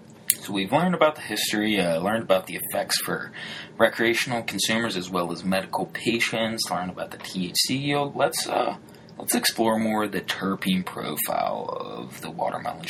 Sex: male